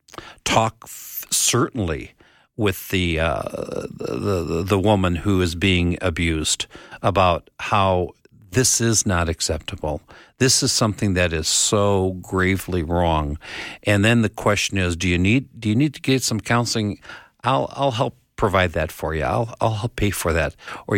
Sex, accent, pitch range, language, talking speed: male, American, 90-115 Hz, English, 160 wpm